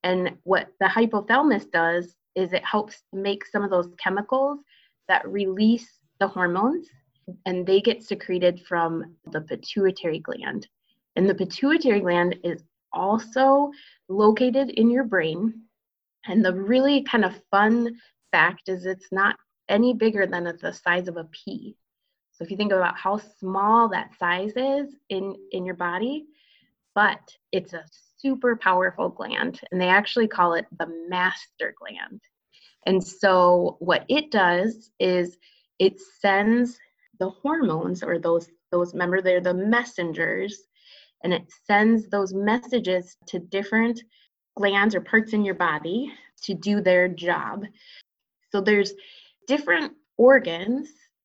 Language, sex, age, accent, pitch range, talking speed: English, female, 20-39, American, 180-230 Hz, 140 wpm